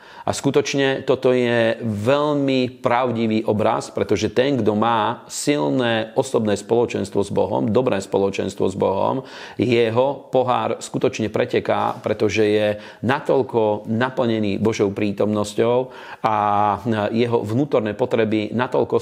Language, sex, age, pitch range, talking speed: Slovak, male, 40-59, 105-120 Hz, 110 wpm